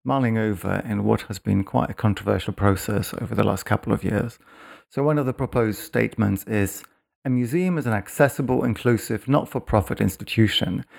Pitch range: 100-125 Hz